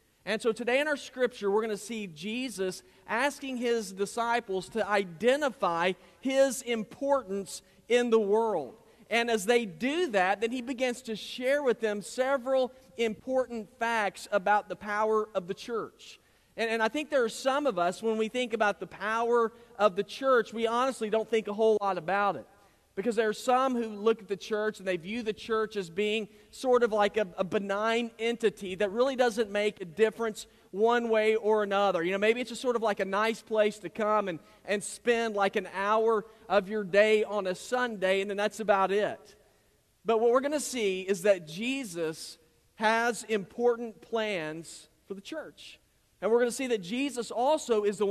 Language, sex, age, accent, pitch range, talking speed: English, male, 40-59, American, 200-235 Hz, 195 wpm